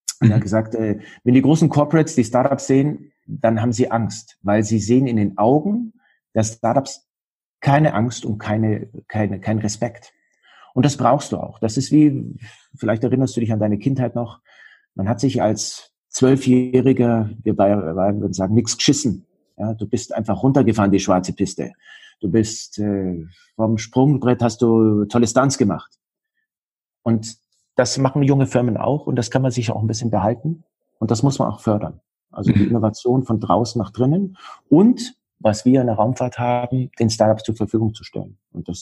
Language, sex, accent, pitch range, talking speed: German, male, German, 110-130 Hz, 180 wpm